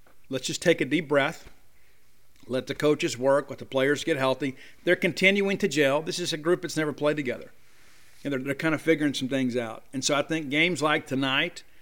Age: 50-69